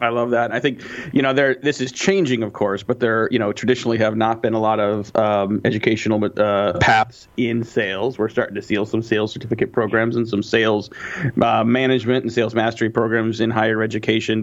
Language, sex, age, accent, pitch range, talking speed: English, male, 30-49, American, 110-120 Hz, 210 wpm